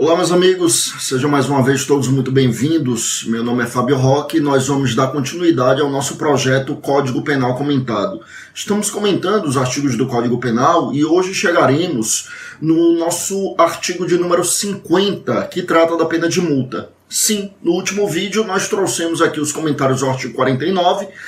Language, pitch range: Portuguese, 130-170 Hz